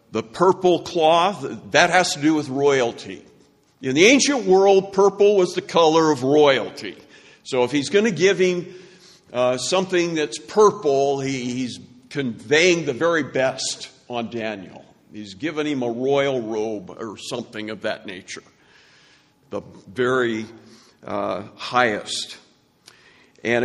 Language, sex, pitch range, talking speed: English, male, 130-180 Hz, 135 wpm